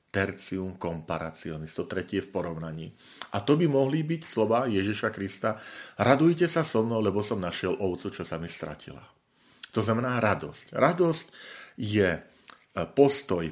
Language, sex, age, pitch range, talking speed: Slovak, male, 40-59, 90-120 Hz, 140 wpm